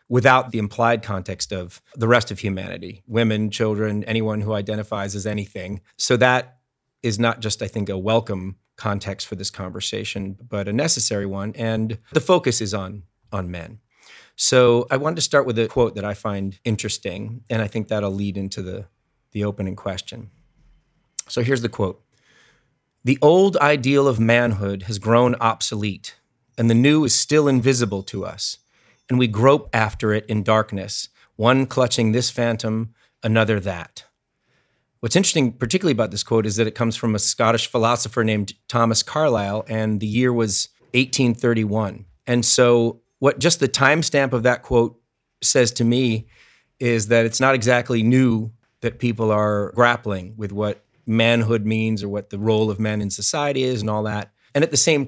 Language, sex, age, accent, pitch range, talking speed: English, male, 30-49, American, 105-125 Hz, 175 wpm